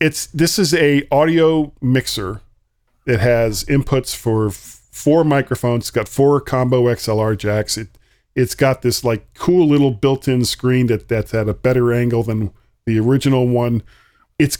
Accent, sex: American, male